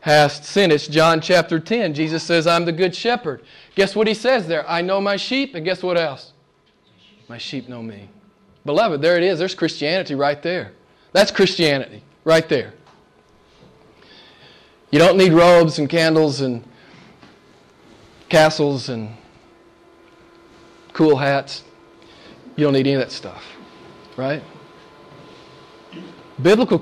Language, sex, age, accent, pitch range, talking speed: English, male, 40-59, American, 145-195 Hz, 135 wpm